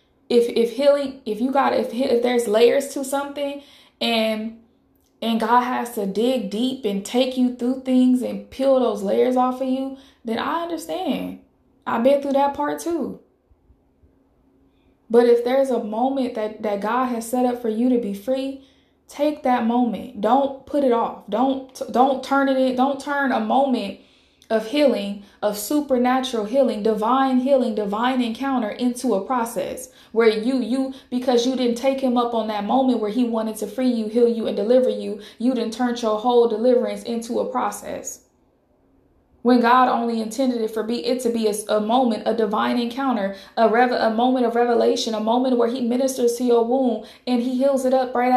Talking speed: 190 wpm